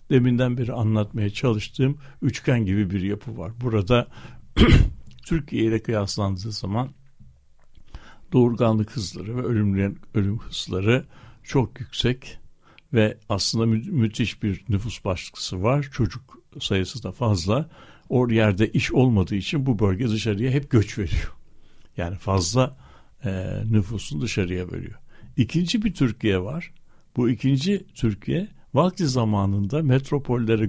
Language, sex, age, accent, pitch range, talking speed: Turkish, male, 60-79, native, 105-135 Hz, 115 wpm